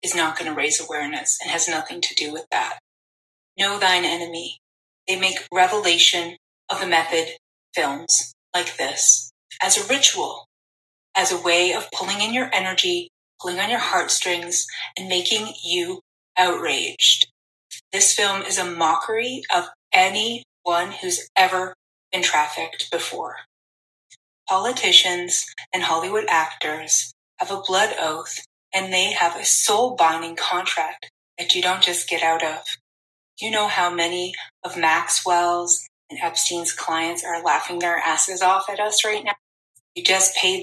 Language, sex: English, female